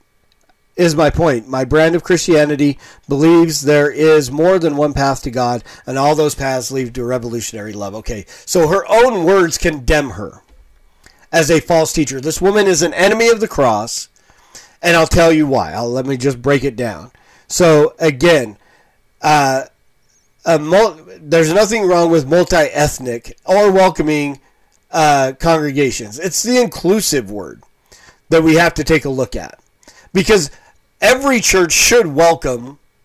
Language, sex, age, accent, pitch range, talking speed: English, male, 40-59, American, 140-190 Hz, 155 wpm